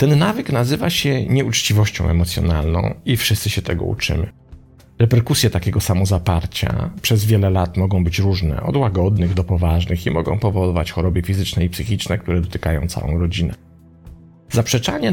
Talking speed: 145 wpm